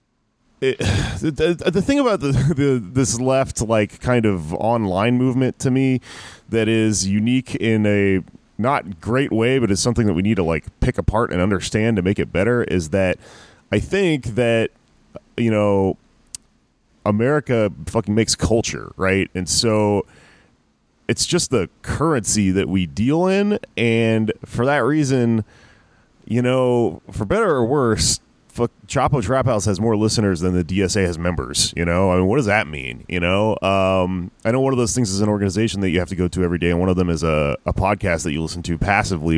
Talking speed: 190 wpm